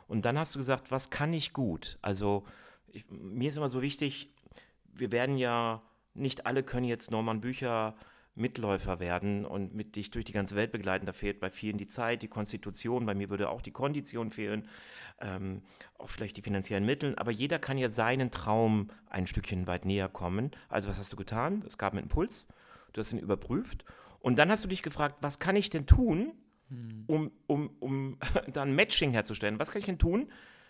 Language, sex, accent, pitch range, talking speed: German, male, German, 105-145 Hz, 195 wpm